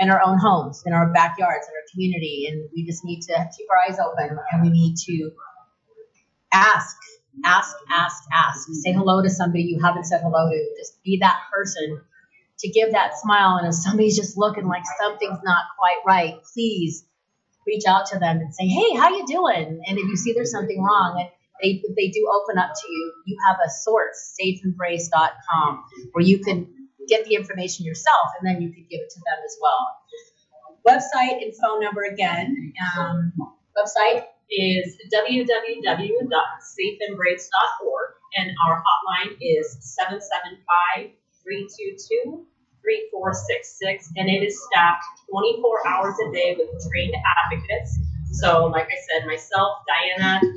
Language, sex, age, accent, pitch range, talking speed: English, female, 30-49, American, 170-220 Hz, 160 wpm